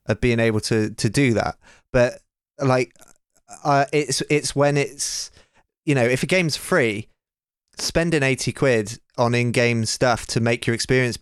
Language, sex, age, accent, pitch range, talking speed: English, male, 20-39, British, 110-135 Hz, 160 wpm